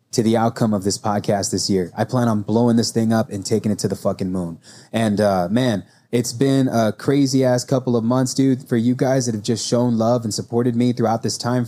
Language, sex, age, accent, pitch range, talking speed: English, male, 20-39, American, 110-130 Hz, 245 wpm